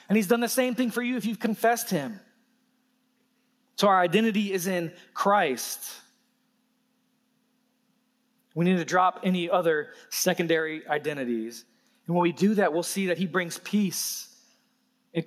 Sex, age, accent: male, 20-39, American